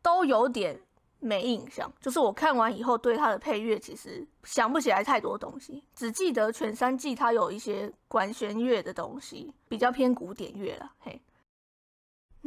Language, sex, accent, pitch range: Chinese, female, American, 230-290 Hz